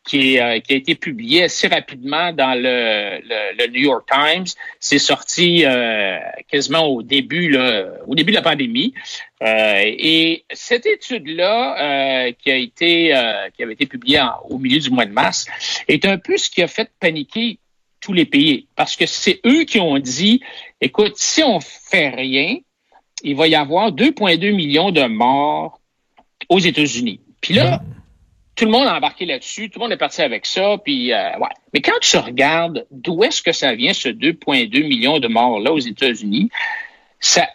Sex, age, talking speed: male, 60-79, 180 wpm